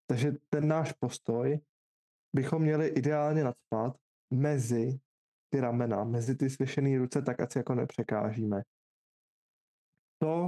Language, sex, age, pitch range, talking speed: Czech, male, 20-39, 125-145 Hz, 115 wpm